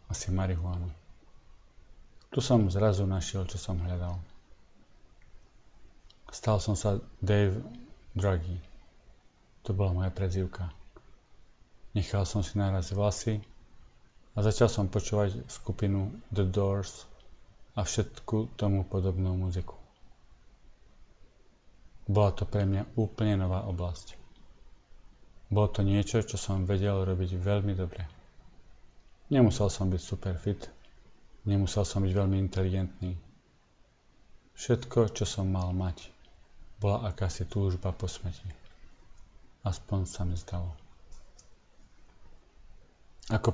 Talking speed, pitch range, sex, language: 105 wpm, 90-105 Hz, male, Slovak